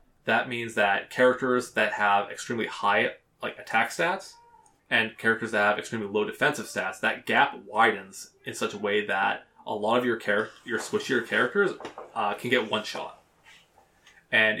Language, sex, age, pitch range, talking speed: English, male, 20-39, 105-125 Hz, 170 wpm